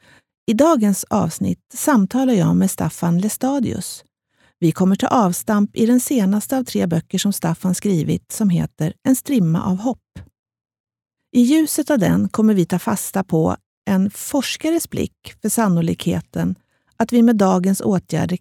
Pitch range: 180-240 Hz